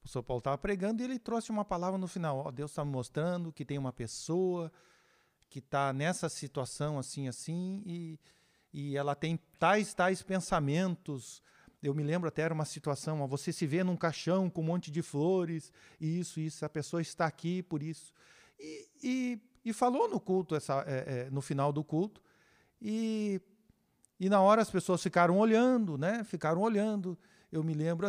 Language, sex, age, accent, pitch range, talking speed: Portuguese, male, 50-69, Brazilian, 145-210 Hz, 190 wpm